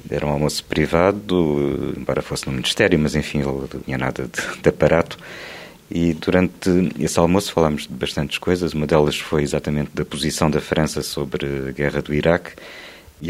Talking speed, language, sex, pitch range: 175 wpm, Portuguese, male, 75-85 Hz